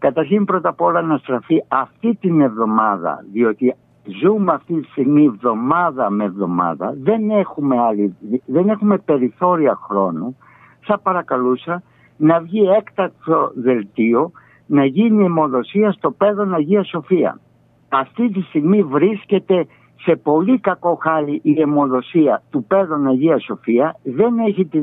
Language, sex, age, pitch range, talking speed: Greek, male, 60-79, 135-200 Hz, 130 wpm